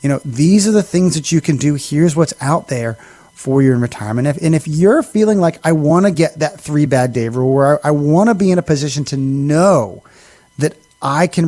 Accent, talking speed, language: American, 250 wpm, English